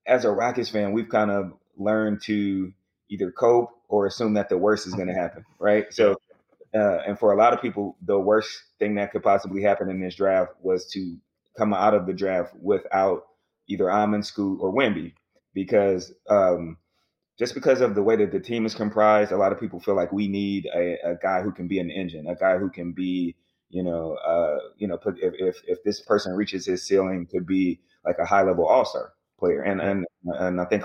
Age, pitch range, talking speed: 30-49, 90-105 Hz, 220 wpm